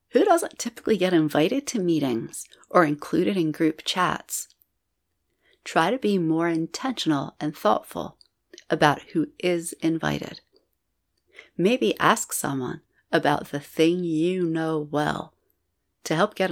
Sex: female